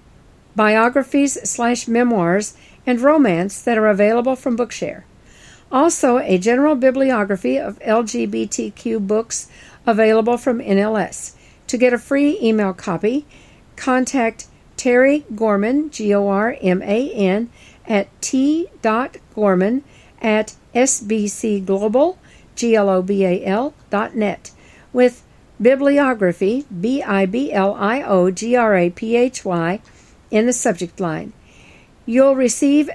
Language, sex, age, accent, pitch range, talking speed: English, female, 60-79, American, 205-265 Hz, 80 wpm